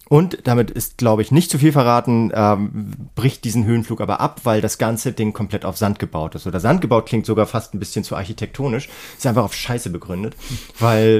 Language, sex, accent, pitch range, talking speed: German, male, German, 105-125 Hz, 215 wpm